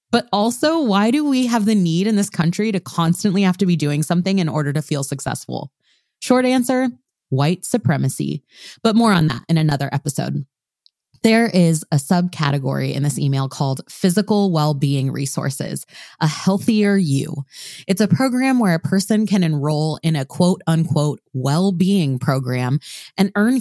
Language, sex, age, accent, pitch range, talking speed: English, female, 20-39, American, 145-205 Hz, 160 wpm